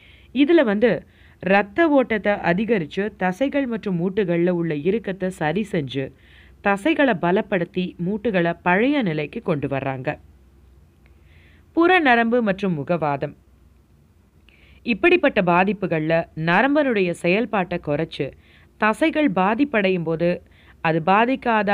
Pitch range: 160-225 Hz